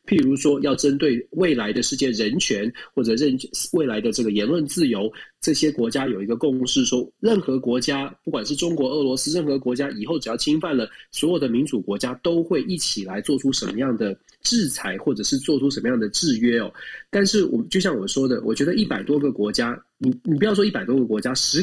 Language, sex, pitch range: Chinese, male, 125-195 Hz